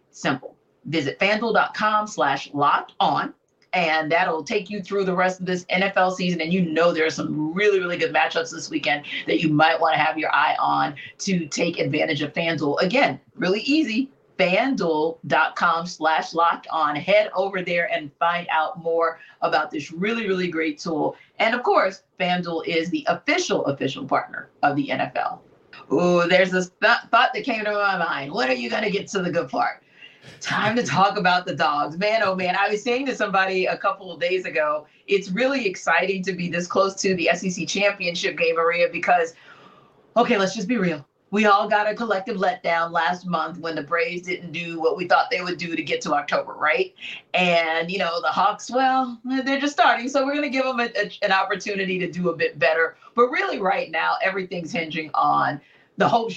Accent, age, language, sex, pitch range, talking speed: American, 40-59, English, female, 165-210 Hz, 200 wpm